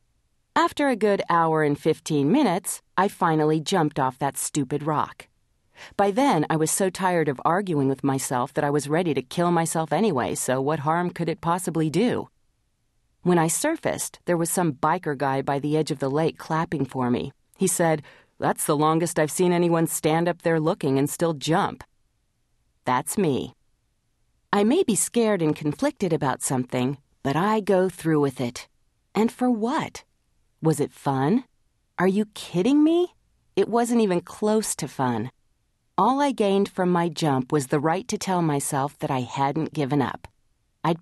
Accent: American